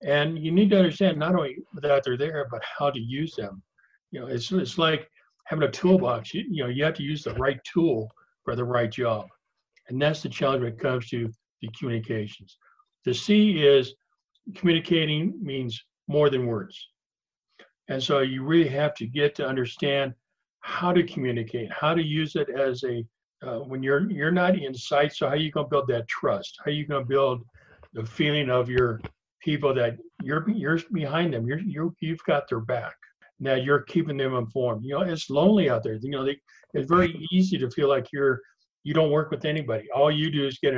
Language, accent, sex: English, American, male